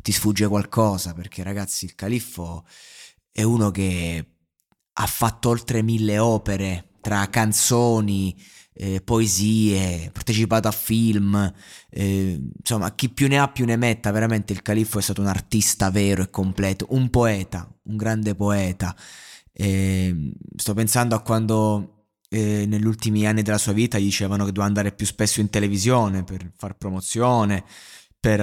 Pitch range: 95-110 Hz